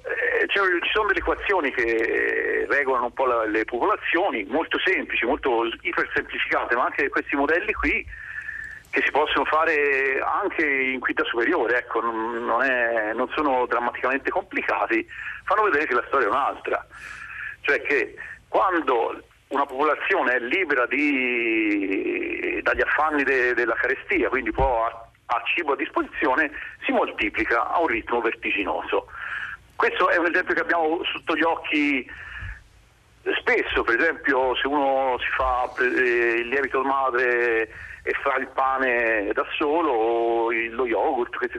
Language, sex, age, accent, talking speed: Italian, male, 50-69, native, 145 wpm